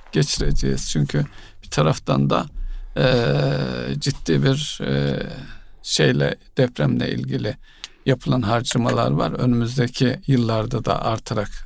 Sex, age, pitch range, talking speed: male, 50-69, 110-135 Hz, 100 wpm